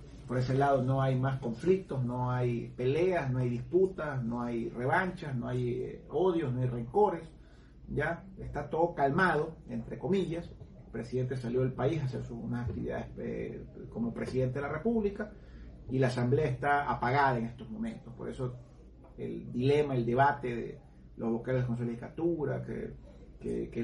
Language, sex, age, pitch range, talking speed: Spanish, male, 40-59, 125-175 Hz, 165 wpm